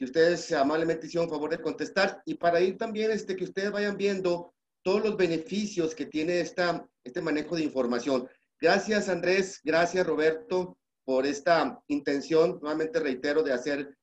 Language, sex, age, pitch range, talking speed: Spanish, male, 40-59, 140-175 Hz, 160 wpm